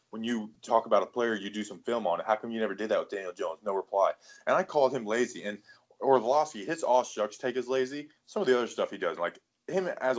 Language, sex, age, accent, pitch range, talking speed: English, male, 20-39, American, 105-125 Hz, 270 wpm